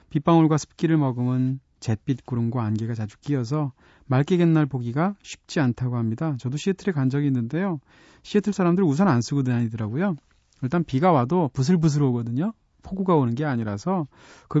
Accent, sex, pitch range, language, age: native, male, 120-160 Hz, Korean, 40-59